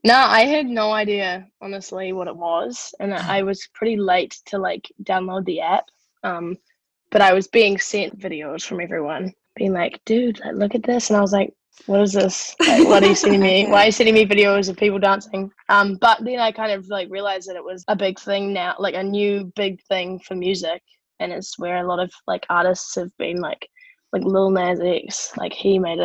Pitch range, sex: 185-215 Hz, female